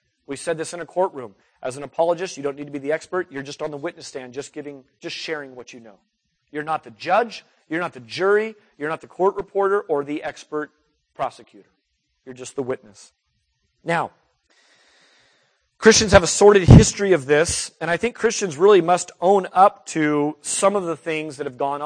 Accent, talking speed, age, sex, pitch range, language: American, 205 wpm, 40-59, male, 150-195 Hz, English